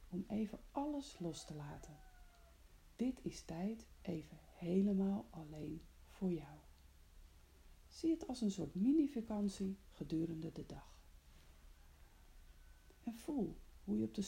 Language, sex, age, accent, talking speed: Dutch, female, 40-59, Dutch, 120 wpm